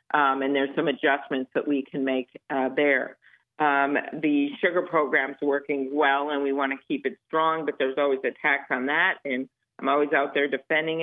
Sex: female